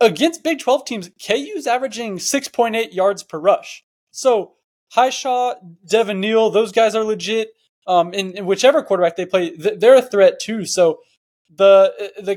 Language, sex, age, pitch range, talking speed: English, male, 20-39, 190-245 Hz, 160 wpm